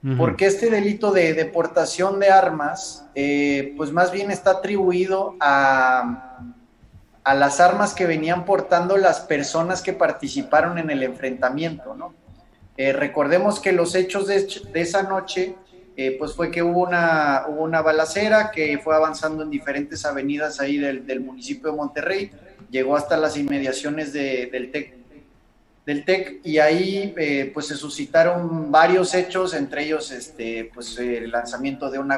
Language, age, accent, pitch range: Spanish, 30-49, Mexican, 135-180 Hz